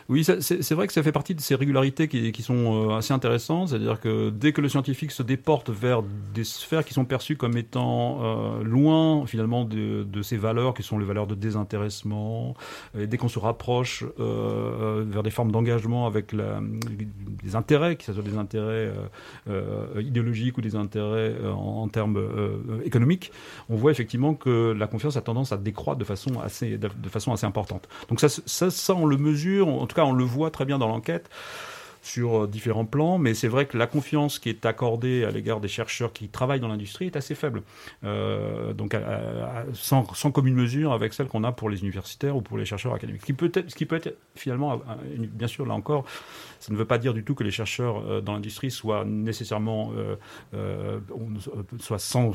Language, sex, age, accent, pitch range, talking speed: French, male, 40-59, French, 110-135 Hz, 205 wpm